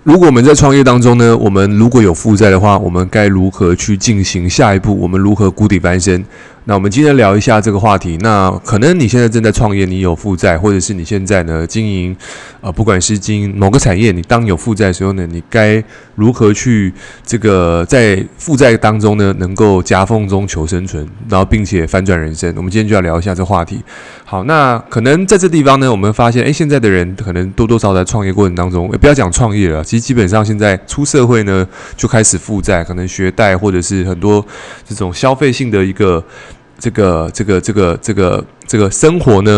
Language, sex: Chinese, male